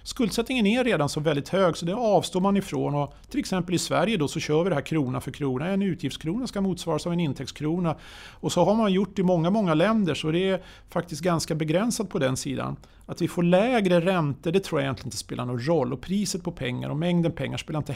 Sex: male